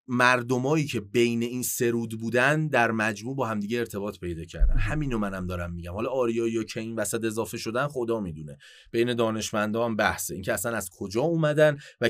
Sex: male